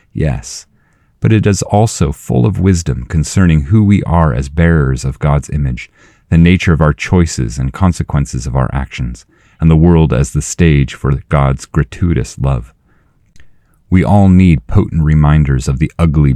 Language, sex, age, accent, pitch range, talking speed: English, male, 30-49, American, 70-85 Hz, 165 wpm